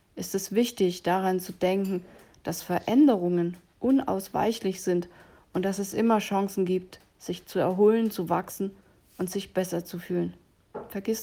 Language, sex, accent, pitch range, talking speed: German, female, German, 175-205 Hz, 145 wpm